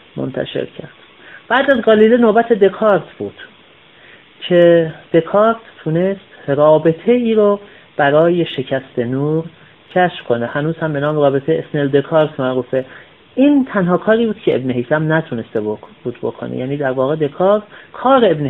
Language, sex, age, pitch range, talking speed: Persian, male, 40-59, 125-175 Hz, 135 wpm